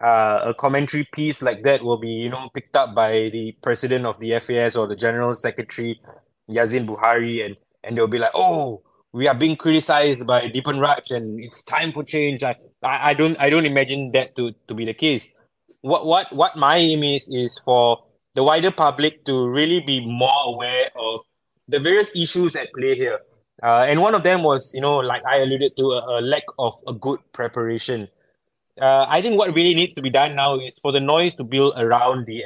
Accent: Malaysian